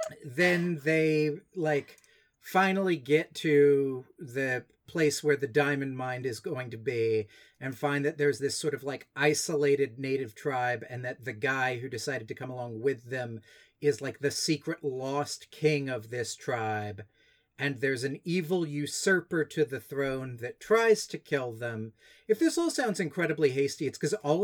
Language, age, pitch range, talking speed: English, 40-59, 135-170 Hz, 170 wpm